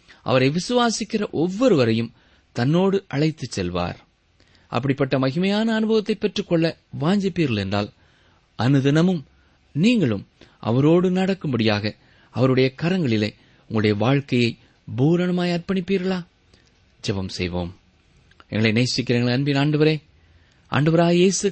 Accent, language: native, Tamil